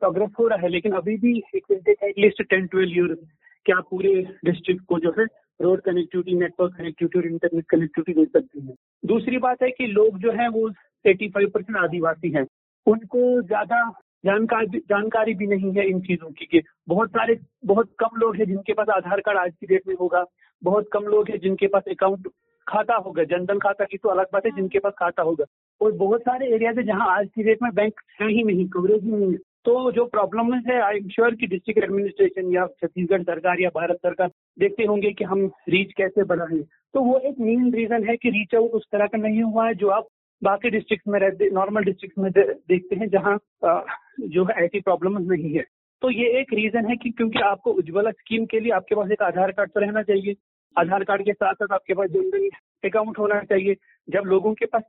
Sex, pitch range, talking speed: male, 185-225 Hz, 205 wpm